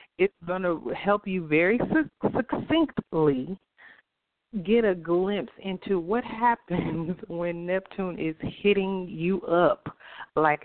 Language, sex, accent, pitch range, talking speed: English, female, American, 145-200 Hz, 115 wpm